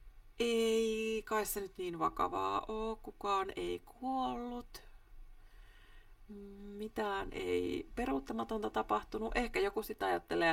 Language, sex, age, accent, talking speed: Finnish, female, 30-49, native, 105 wpm